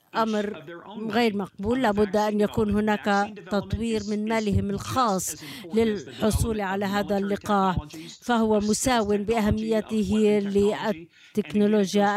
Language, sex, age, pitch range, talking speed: Arabic, female, 50-69, 195-215 Hz, 95 wpm